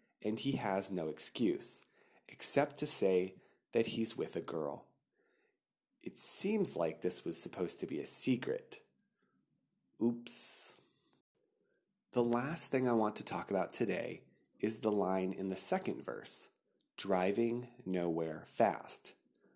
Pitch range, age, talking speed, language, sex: 95-125 Hz, 30-49, 130 wpm, English, male